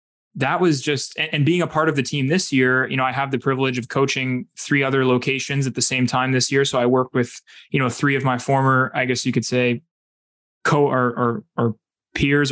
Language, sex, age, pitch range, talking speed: English, male, 20-39, 125-150 Hz, 235 wpm